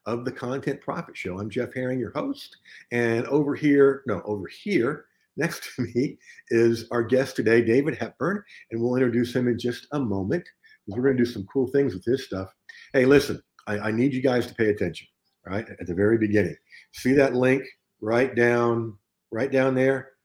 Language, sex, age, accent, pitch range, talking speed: English, male, 50-69, American, 100-130 Hz, 195 wpm